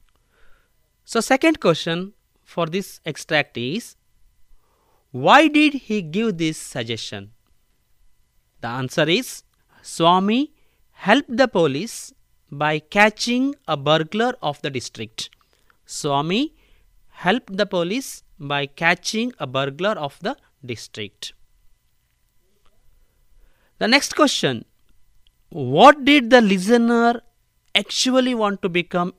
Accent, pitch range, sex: native, 150-235 Hz, male